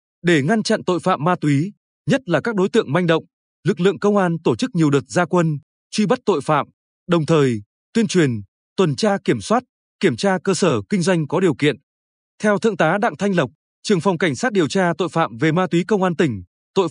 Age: 20-39